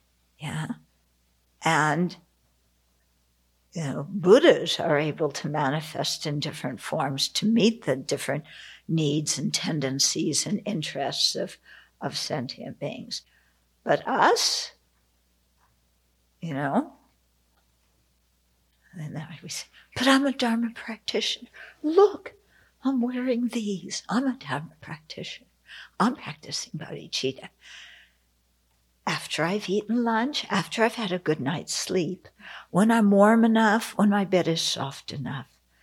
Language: English